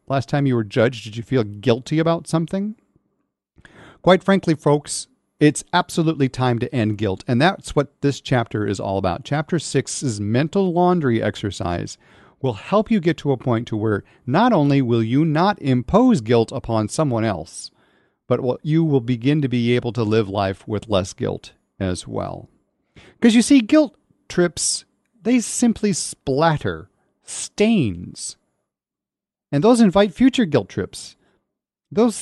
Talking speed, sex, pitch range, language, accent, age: 160 wpm, male, 110-175 Hz, English, American, 40-59